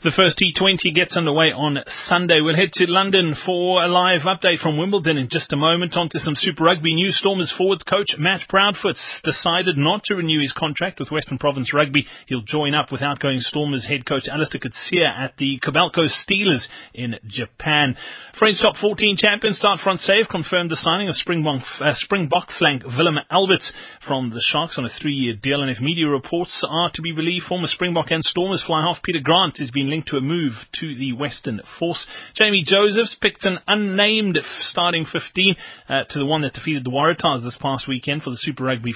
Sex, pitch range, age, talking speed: male, 140-180 Hz, 30-49, 200 wpm